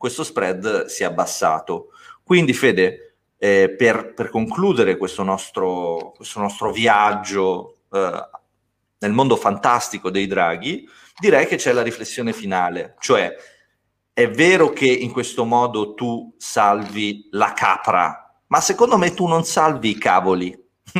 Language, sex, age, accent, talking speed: Italian, male, 30-49, native, 135 wpm